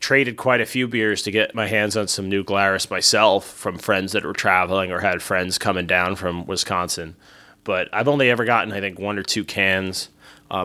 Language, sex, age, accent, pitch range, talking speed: English, male, 30-49, American, 100-125 Hz, 215 wpm